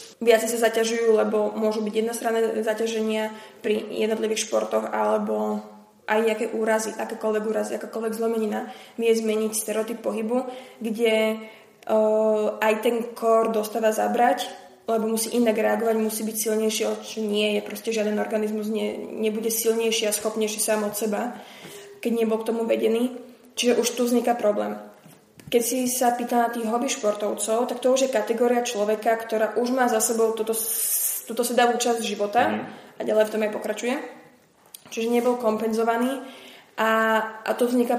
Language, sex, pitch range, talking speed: Slovak, female, 215-235 Hz, 155 wpm